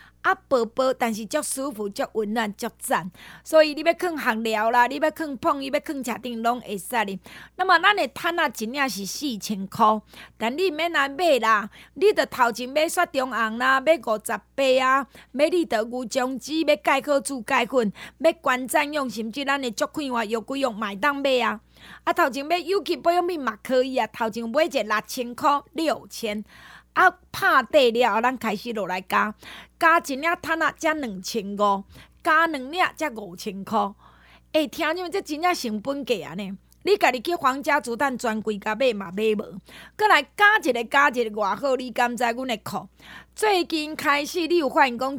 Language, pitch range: Chinese, 230-315 Hz